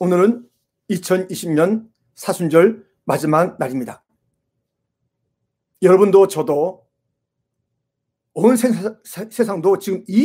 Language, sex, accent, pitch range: Korean, male, native, 135-195 Hz